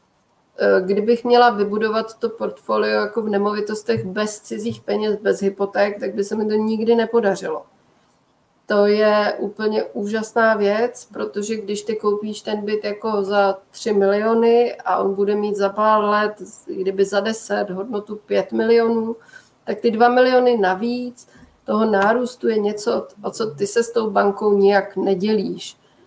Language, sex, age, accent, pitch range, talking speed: Czech, female, 30-49, native, 195-215 Hz, 150 wpm